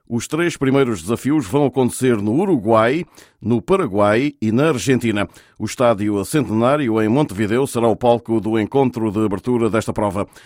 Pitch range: 110-130 Hz